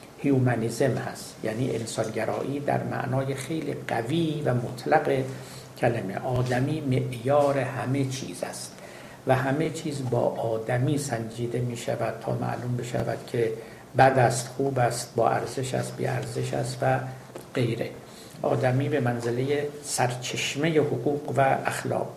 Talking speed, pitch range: 125 wpm, 120-140 Hz